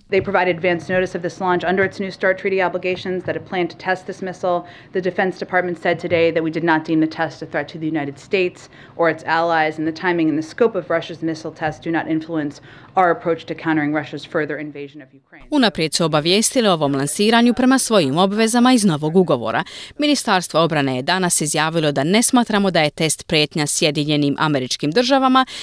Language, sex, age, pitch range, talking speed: Croatian, female, 30-49, 155-210 Hz, 200 wpm